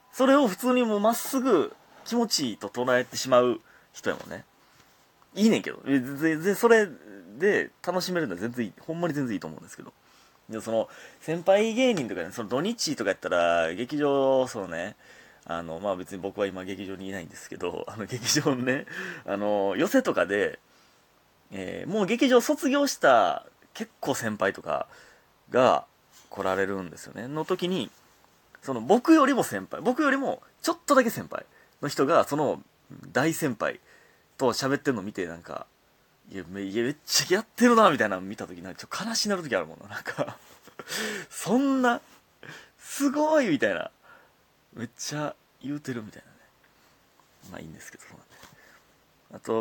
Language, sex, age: Japanese, male, 30-49